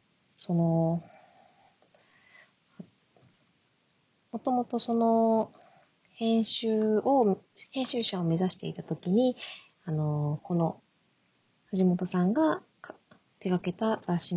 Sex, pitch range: female, 165-205 Hz